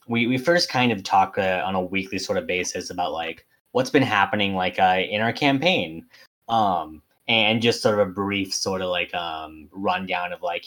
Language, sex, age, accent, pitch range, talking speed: English, male, 20-39, American, 95-125 Hz, 210 wpm